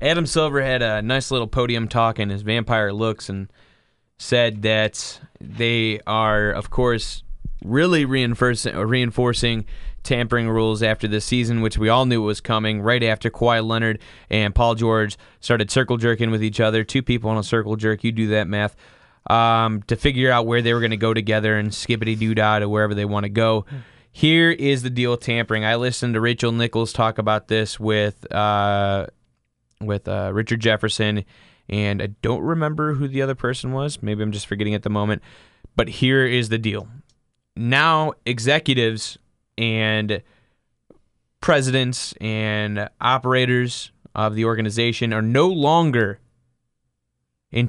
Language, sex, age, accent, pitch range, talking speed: English, male, 20-39, American, 105-125 Hz, 160 wpm